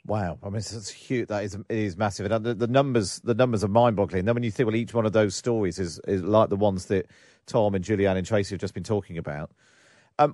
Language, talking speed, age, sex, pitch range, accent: English, 260 wpm, 40-59, male, 105-140 Hz, British